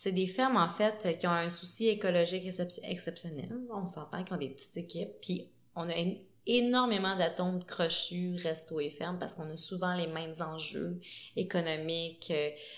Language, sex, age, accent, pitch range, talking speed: French, female, 20-39, Canadian, 170-205 Hz, 165 wpm